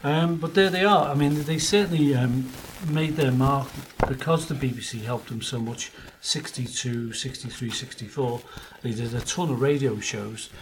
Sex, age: male, 50-69